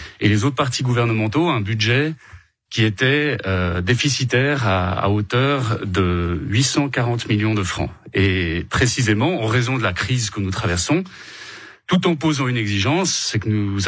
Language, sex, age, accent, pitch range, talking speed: French, male, 30-49, French, 100-140 Hz, 160 wpm